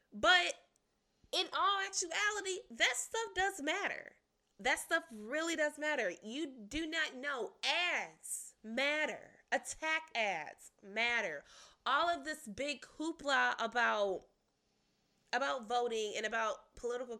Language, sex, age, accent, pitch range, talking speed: English, female, 20-39, American, 200-300 Hz, 115 wpm